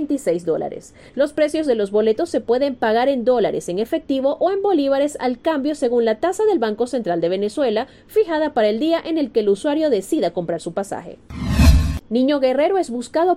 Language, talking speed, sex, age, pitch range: Spanish, 195 wpm, female, 30-49, 205-300 Hz